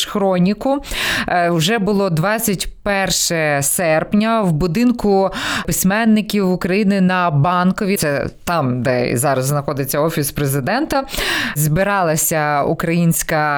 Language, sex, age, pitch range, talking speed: English, female, 20-39, 170-215 Hz, 90 wpm